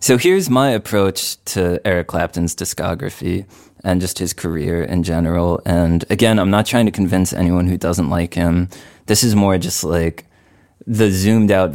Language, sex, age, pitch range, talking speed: English, male, 20-39, 85-100 Hz, 175 wpm